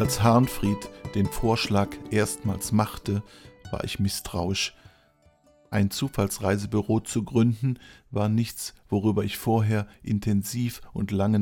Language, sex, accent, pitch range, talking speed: German, male, German, 100-120 Hz, 110 wpm